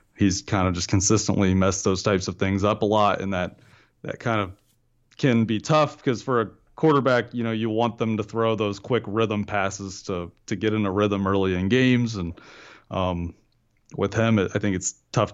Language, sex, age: English, male, 30-49